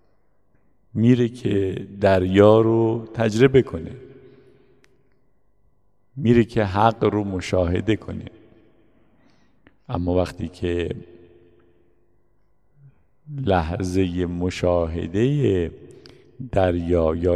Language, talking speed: Persian, 65 wpm